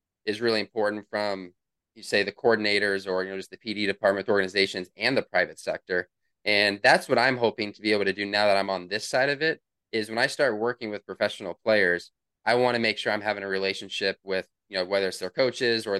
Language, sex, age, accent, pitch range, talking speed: English, male, 20-39, American, 100-115 Hz, 235 wpm